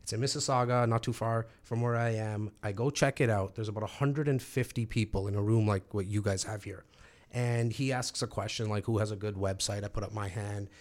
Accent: American